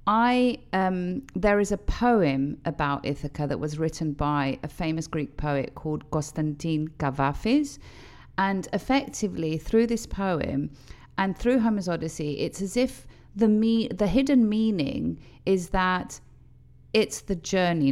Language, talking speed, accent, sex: Greek, 135 wpm, British, female